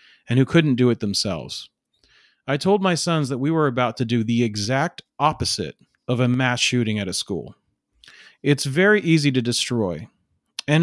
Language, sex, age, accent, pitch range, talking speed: English, male, 40-59, American, 115-145 Hz, 175 wpm